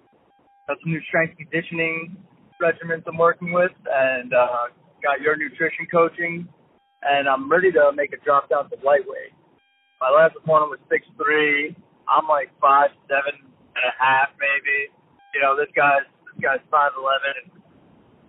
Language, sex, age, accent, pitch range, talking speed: English, male, 20-39, American, 140-185 Hz, 160 wpm